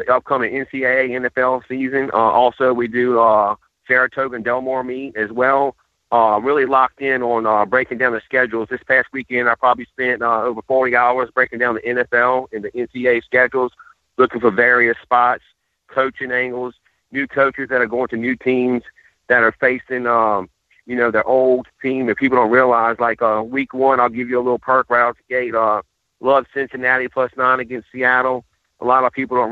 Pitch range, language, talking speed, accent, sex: 120-130 Hz, English, 195 wpm, American, male